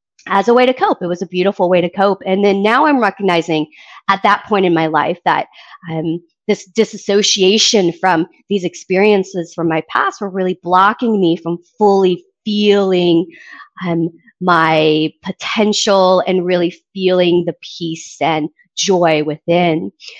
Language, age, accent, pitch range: English, 30-49, American, 170-205 Hz